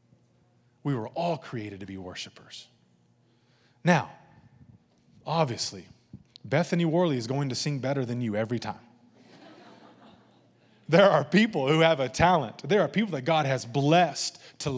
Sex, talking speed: male, 140 wpm